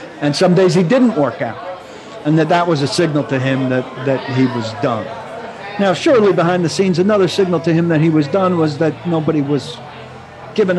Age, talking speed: 50-69, 210 wpm